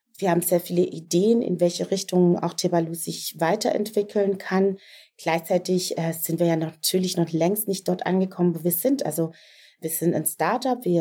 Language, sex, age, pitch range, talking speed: German, female, 30-49, 175-210 Hz, 180 wpm